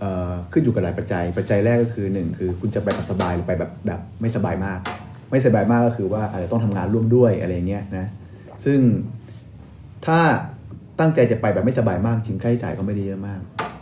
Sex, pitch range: male, 100-120 Hz